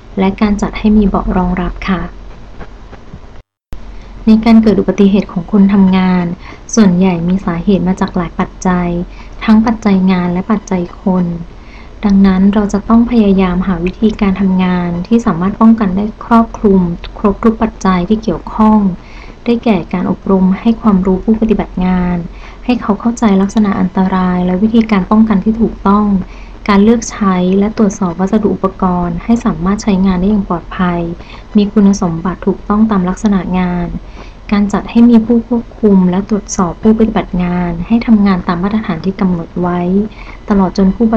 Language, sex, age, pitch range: Thai, female, 20-39, 185-215 Hz